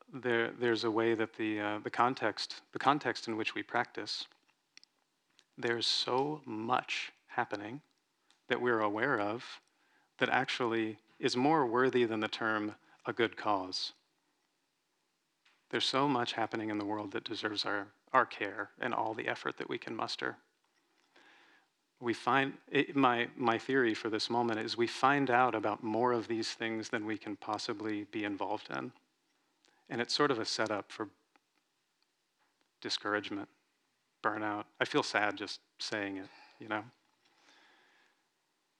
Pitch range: 105-125 Hz